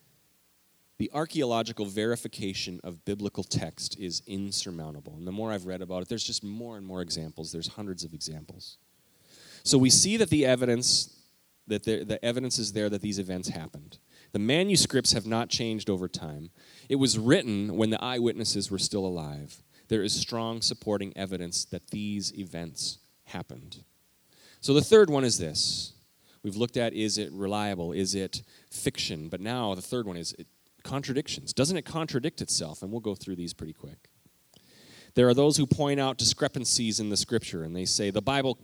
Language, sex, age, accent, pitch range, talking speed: English, male, 30-49, American, 100-135 Hz, 180 wpm